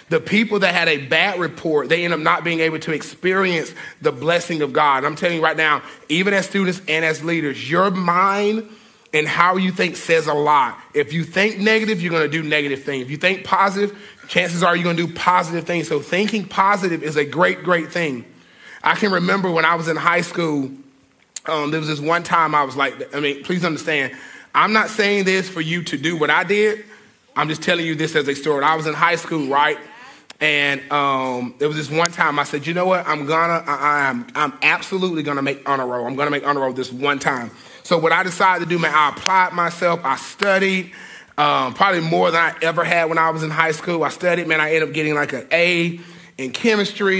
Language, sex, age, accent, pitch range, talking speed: English, male, 30-49, American, 150-180 Hz, 230 wpm